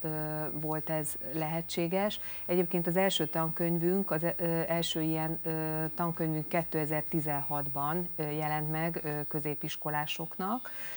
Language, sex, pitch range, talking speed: Hungarian, female, 155-170 Hz, 80 wpm